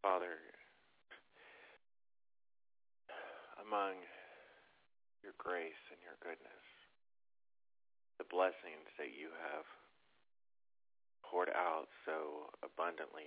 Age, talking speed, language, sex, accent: 30-49, 70 wpm, English, male, American